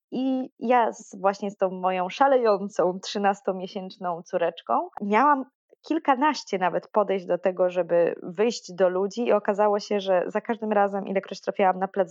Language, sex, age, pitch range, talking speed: Polish, female, 20-39, 190-240 Hz, 155 wpm